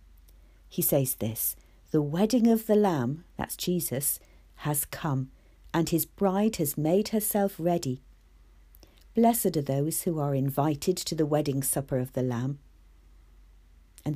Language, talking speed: English, 140 wpm